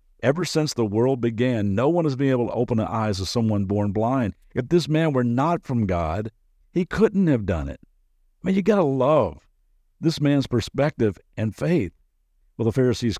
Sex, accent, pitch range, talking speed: male, American, 85-125 Hz, 200 wpm